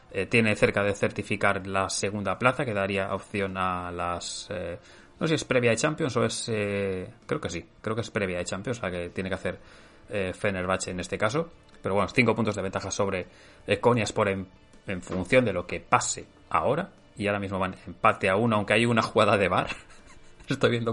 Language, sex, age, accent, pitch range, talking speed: Spanish, male, 20-39, Spanish, 95-105 Hz, 220 wpm